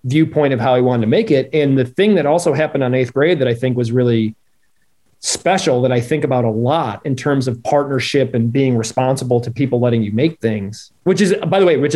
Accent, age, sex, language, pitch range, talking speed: American, 30-49, male, English, 120-155 Hz, 240 wpm